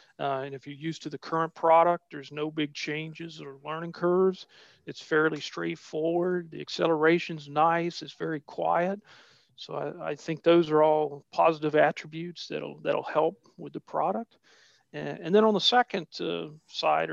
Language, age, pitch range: English, 40-59, 150-175 Hz